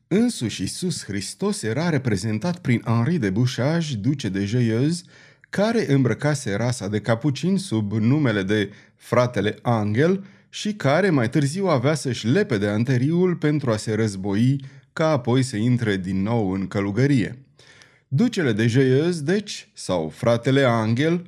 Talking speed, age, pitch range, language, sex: 140 wpm, 30-49, 115-160 Hz, Romanian, male